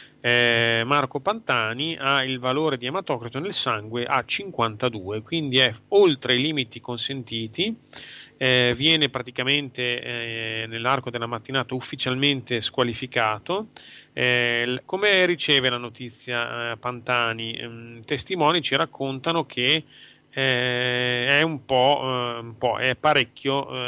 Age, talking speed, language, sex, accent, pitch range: 30-49, 100 wpm, Italian, male, native, 120-140 Hz